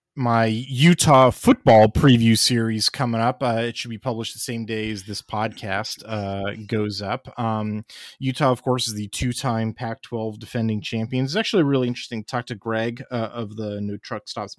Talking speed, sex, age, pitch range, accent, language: 190 wpm, male, 30-49, 110-140 Hz, American, English